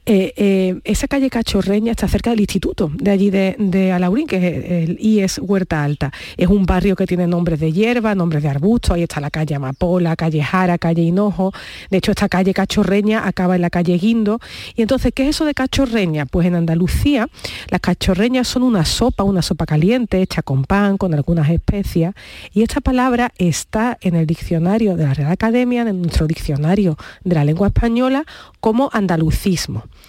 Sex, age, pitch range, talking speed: female, 50-69, 180-225 Hz, 190 wpm